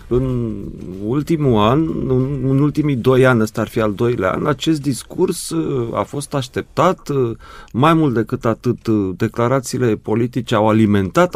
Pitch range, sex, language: 115-160 Hz, male, Romanian